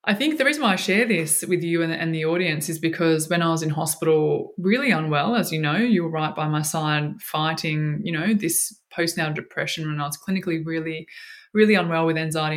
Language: English